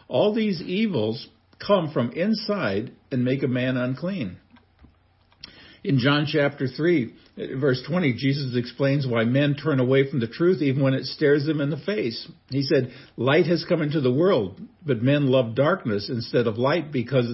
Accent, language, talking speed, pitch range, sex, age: American, English, 175 wpm, 120-155 Hz, male, 50-69